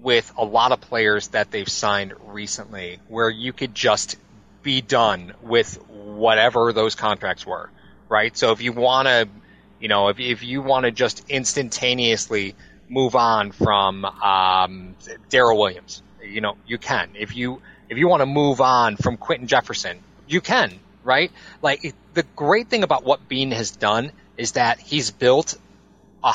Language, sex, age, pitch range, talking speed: English, male, 30-49, 110-145 Hz, 170 wpm